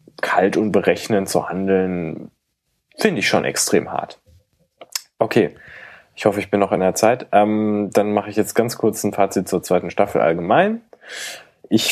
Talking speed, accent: 165 wpm, German